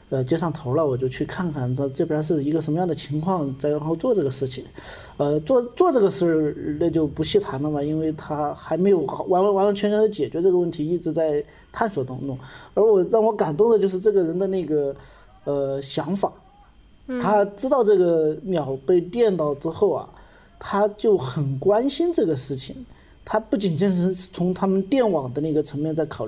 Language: Chinese